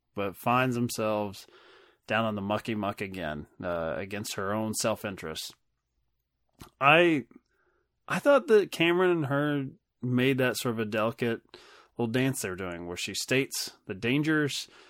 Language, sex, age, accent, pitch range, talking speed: English, male, 20-39, American, 100-135 Hz, 145 wpm